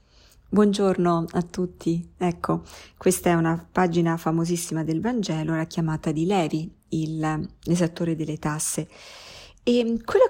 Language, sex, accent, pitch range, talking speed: Italian, female, native, 150-190 Hz, 115 wpm